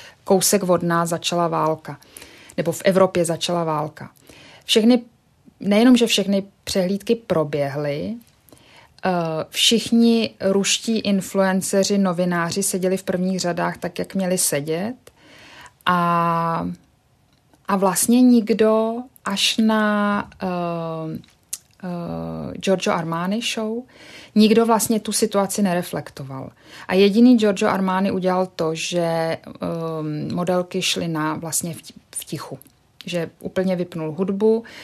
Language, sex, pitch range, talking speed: Czech, female, 165-200 Hz, 105 wpm